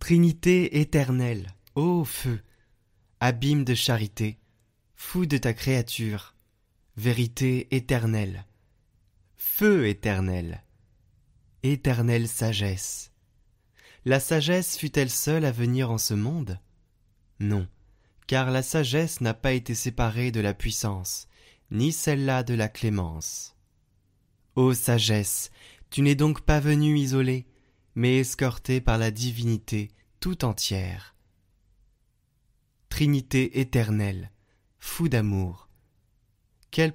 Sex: male